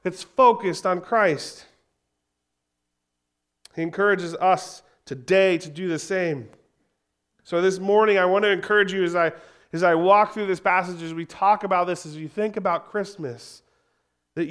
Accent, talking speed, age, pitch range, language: American, 160 wpm, 30-49, 135-195 Hz, English